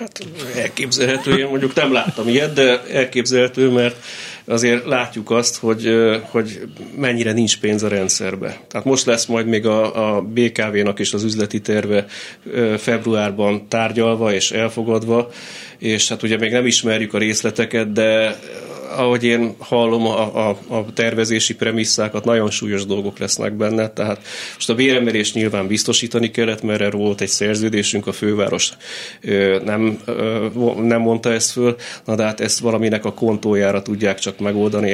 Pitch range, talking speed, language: 105-120 Hz, 150 wpm, Hungarian